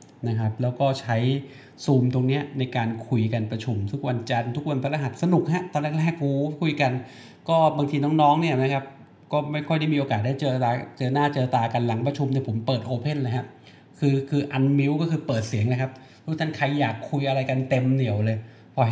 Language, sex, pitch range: Thai, male, 120-150 Hz